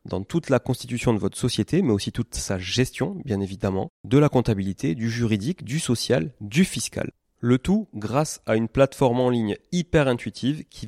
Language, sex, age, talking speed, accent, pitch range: French, male, 30-49, 190 wpm, French, 110-135 Hz